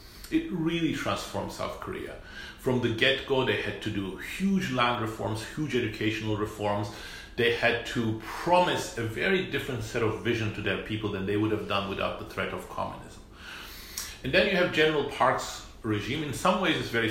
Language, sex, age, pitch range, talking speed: English, male, 40-59, 105-135 Hz, 185 wpm